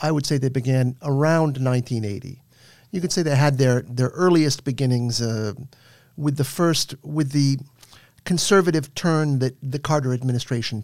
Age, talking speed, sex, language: 50-69, 155 wpm, male, English